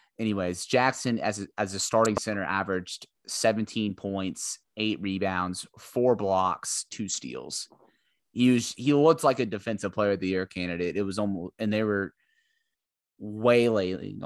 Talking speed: 150 wpm